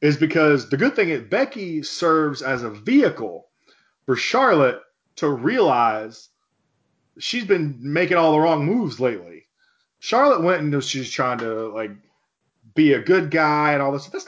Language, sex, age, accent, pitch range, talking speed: English, male, 30-49, American, 130-180 Hz, 160 wpm